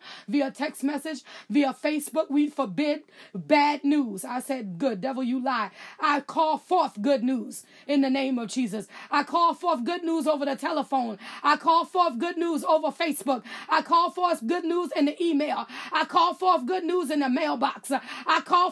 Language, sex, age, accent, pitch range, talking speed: English, female, 30-49, American, 255-345 Hz, 185 wpm